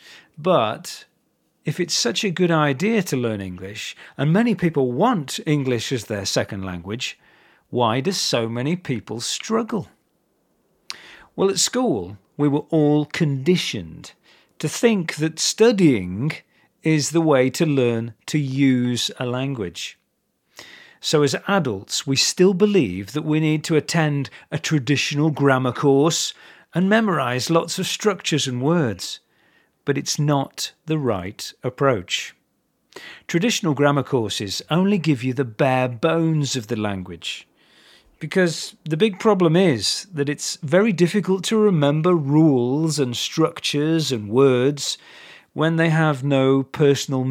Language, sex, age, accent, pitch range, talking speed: English, male, 40-59, British, 130-170 Hz, 135 wpm